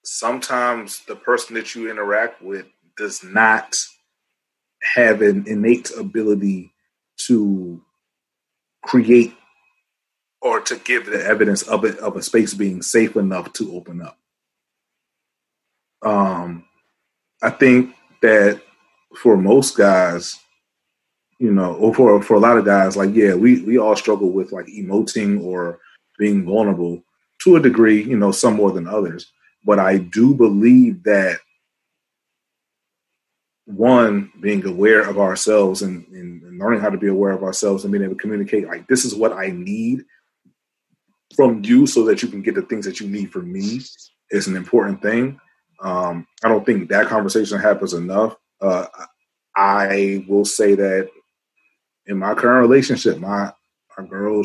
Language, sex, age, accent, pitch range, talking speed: English, male, 30-49, American, 95-120 Hz, 150 wpm